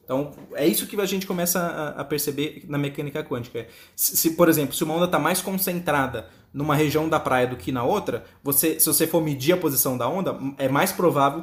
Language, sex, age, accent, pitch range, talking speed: Portuguese, male, 20-39, Brazilian, 145-180 Hz, 215 wpm